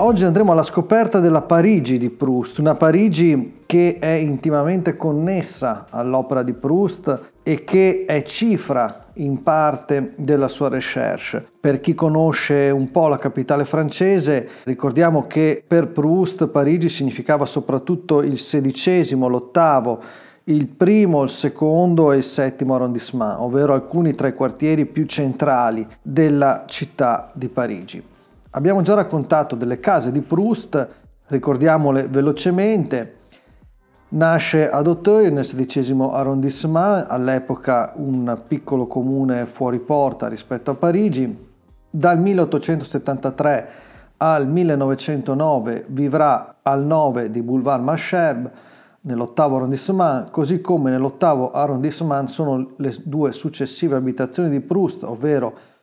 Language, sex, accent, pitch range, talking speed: Italian, male, native, 135-165 Hz, 120 wpm